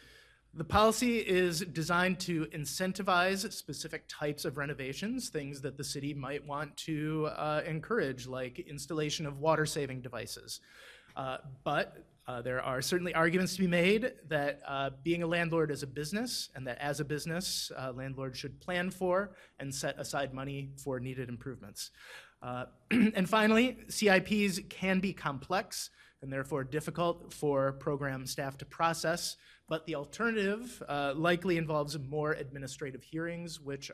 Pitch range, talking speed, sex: 140-180 Hz, 150 wpm, male